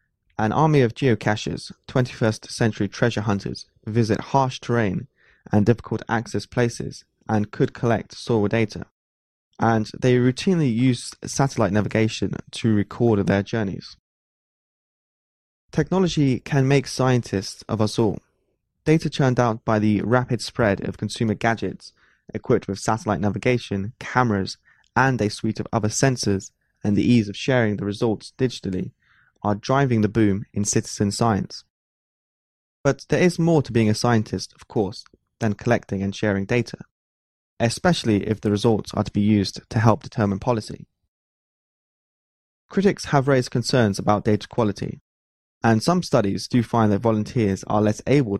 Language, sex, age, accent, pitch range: Chinese, male, 20-39, British, 100-125 Hz